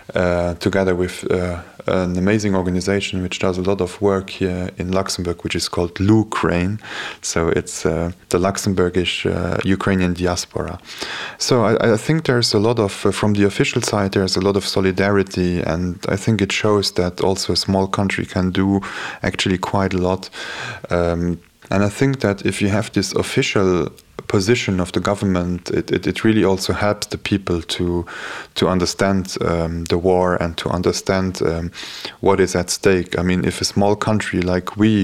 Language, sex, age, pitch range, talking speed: Ukrainian, male, 20-39, 90-100 Hz, 185 wpm